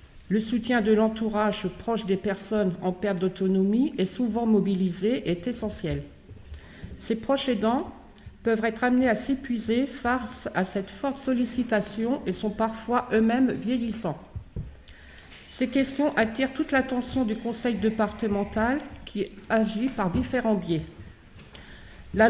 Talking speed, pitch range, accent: 130 wpm, 195-245 Hz, French